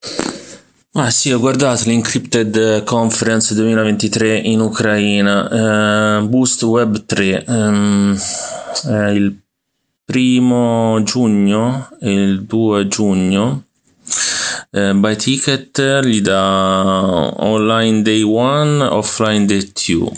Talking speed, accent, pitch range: 95 wpm, native, 90-110 Hz